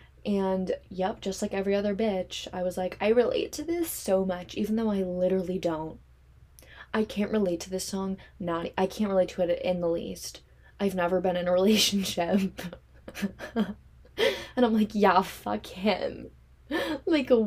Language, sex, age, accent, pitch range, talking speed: English, female, 10-29, American, 170-220 Hz, 170 wpm